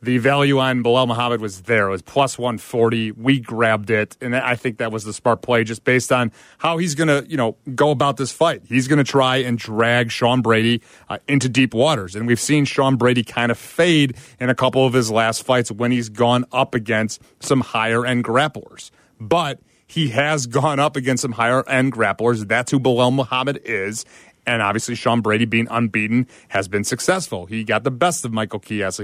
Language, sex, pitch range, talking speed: English, male, 115-140 Hz, 205 wpm